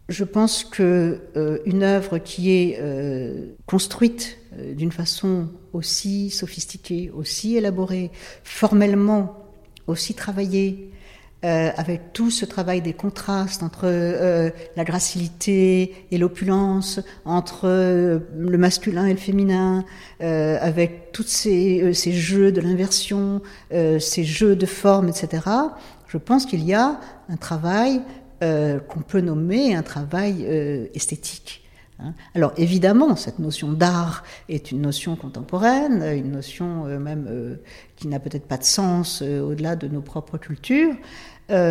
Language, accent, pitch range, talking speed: French, French, 165-200 Hz, 140 wpm